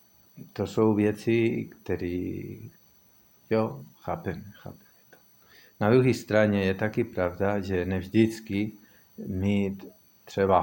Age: 50-69